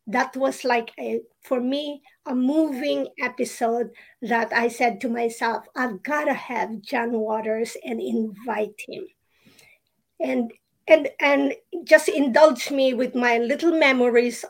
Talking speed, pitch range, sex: 135 wpm, 235-275 Hz, female